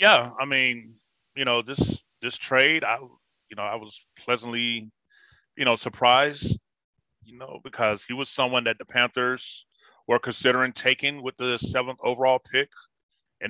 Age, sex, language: 30-49, male, English